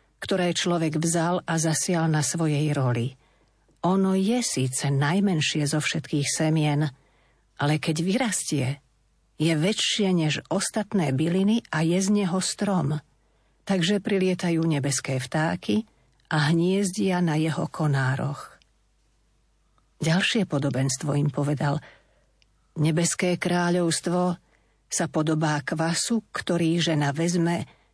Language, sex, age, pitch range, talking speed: Slovak, female, 50-69, 145-175 Hz, 105 wpm